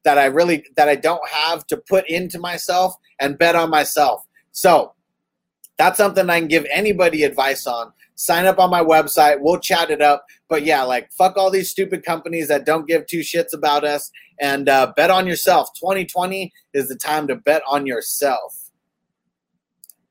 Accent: American